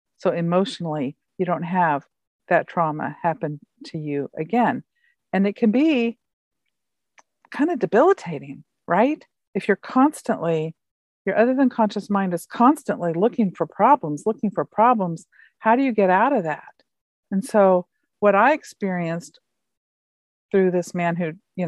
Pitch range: 160-210 Hz